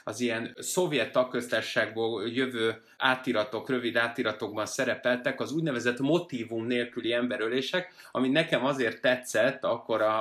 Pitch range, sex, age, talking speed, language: 120-150 Hz, male, 30-49, 120 wpm, Hungarian